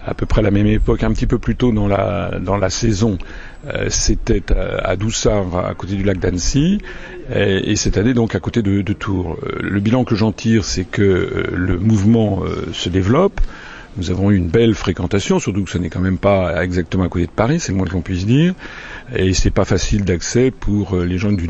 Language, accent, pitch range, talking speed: French, French, 90-110 Hz, 235 wpm